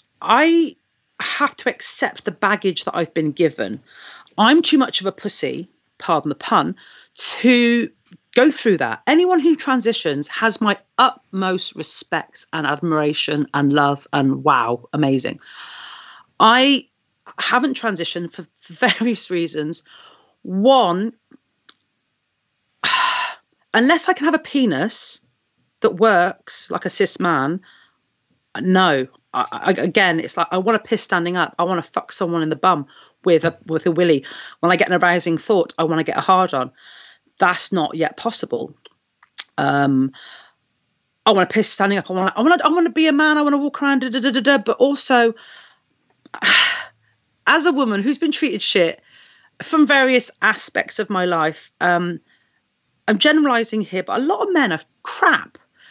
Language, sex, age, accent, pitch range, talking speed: English, female, 40-59, British, 170-275 Hz, 150 wpm